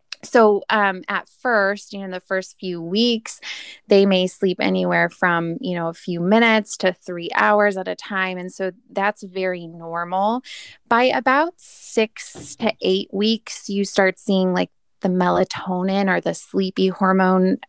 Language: English